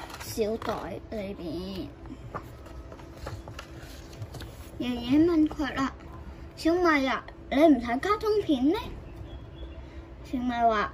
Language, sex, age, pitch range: Chinese, male, 10-29, 225-290 Hz